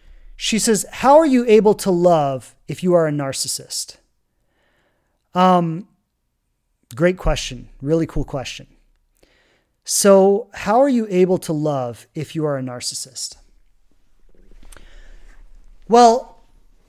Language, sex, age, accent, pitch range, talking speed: English, male, 30-49, American, 135-215 Hz, 115 wpm